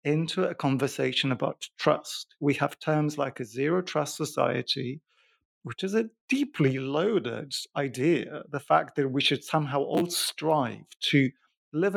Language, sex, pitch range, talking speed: English, male, 135-170 Hz, 145 wpm